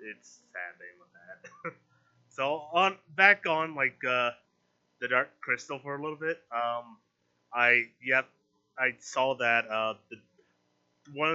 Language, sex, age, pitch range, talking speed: English, male, 20-39, 105-145 Hz, 150 wpm